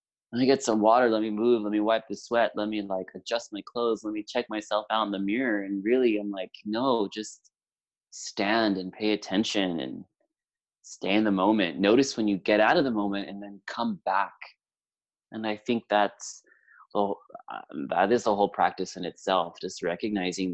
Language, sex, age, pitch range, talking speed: English, male, 20-39, 95-105 Hz, 200 wpm